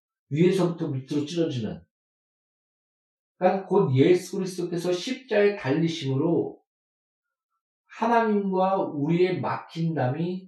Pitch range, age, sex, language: 150-205 Hz, 50-69, male, Korean